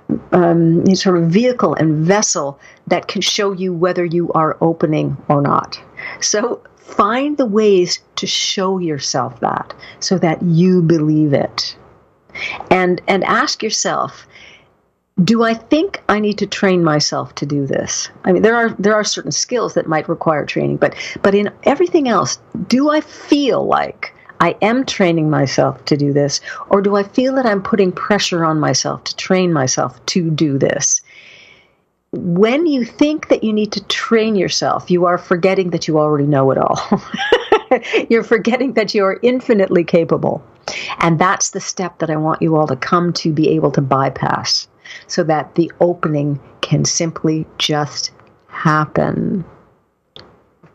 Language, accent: English, American